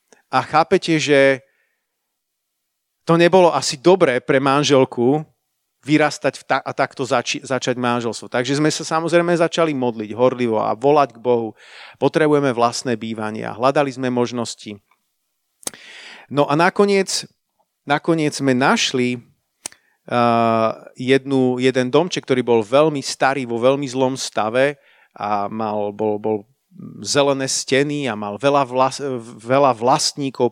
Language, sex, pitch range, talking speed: Slovak, male, 120-145 Hz, 120 wpm